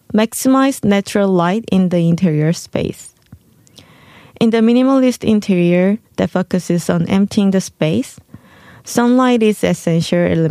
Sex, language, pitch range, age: female, Korean, 175-215 Hz, 20-39